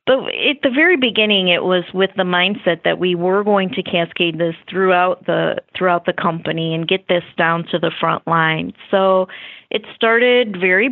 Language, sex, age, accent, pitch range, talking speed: English, female, 30-49, American, 175-205 Hz, 185 wpm